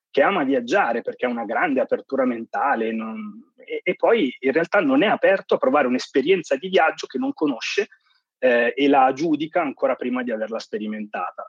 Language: Italian